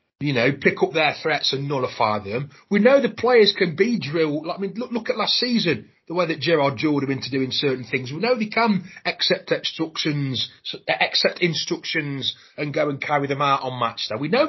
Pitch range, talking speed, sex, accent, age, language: 130-185 Hz, 215 wpm, male, British, 30-49, English